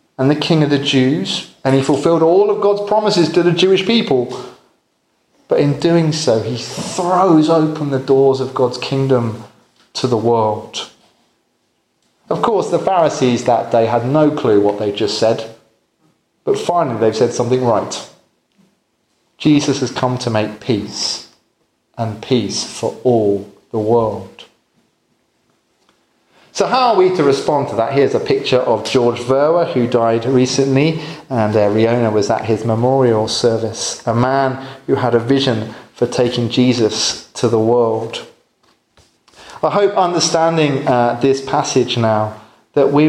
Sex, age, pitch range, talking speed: male, 30-49, 120-160 Hz, 150 wpm